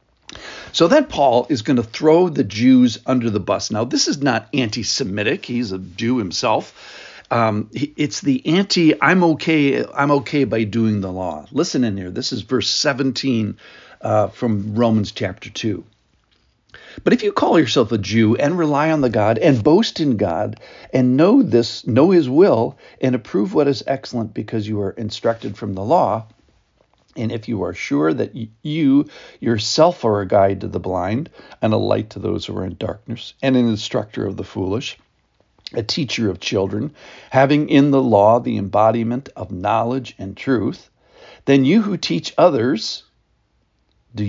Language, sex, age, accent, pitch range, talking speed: English, male, 50-69, American, 105-135 Hz, 175 wpm